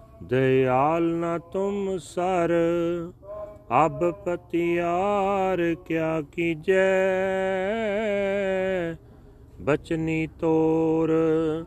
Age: 40-59